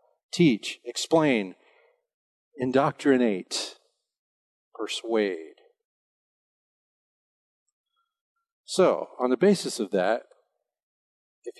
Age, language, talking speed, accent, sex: 50-69, English, 55 wpm, American, male